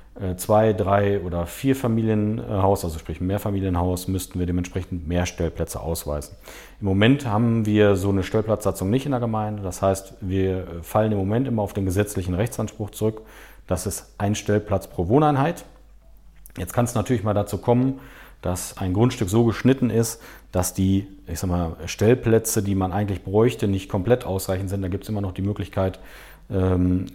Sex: male